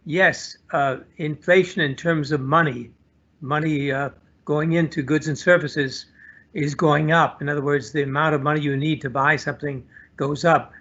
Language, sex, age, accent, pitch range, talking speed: English, male, 60-79, American, 140-165 Hz, 170 wpm